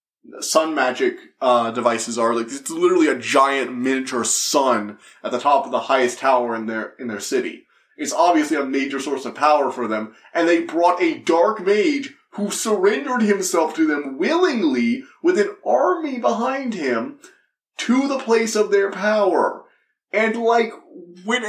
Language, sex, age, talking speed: English, male, 20-39, 165 wpm